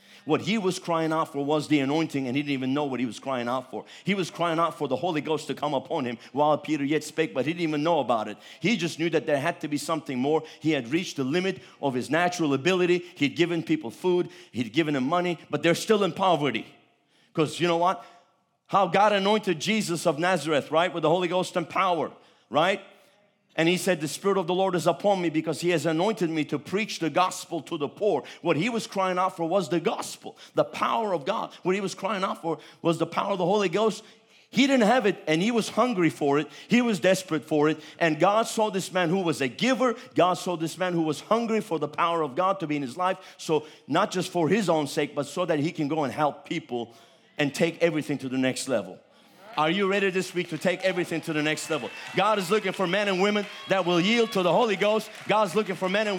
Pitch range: 155-205 Hz